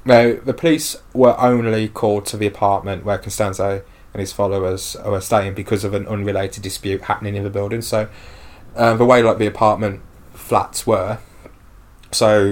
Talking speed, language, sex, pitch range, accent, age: 170 wpm, English, male, 95-115 Hz, British, 20-39